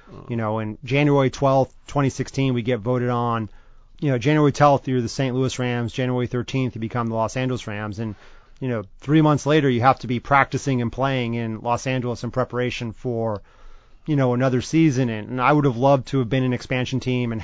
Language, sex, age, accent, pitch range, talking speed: English, male, 30-49, American, 115-135 Hz, 215 wpm